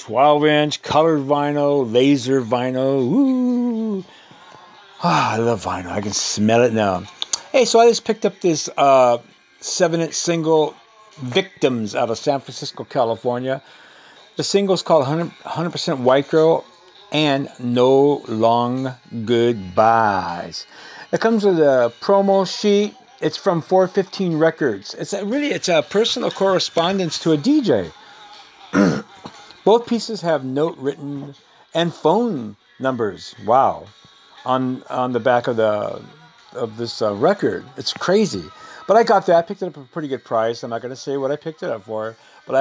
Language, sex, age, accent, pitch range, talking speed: English, male, 50-69, American, 125-170 Hz, 155 wpm